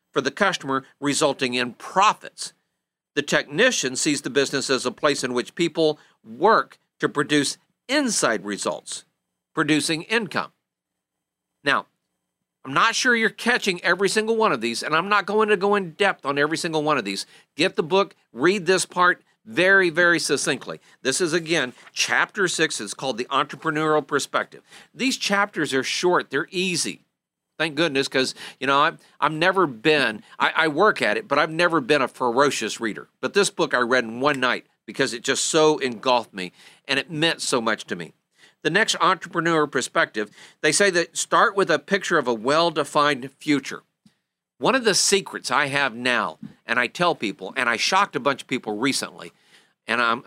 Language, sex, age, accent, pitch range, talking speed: English, male, 50-69, American, 130-180 Hz, 180 wpm